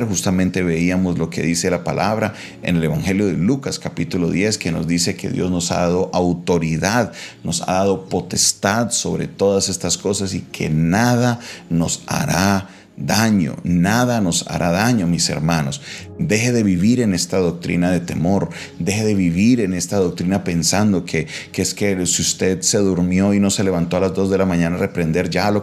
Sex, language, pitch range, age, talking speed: male, Spanish, 85-95 Hz, 30-49, 185 wpm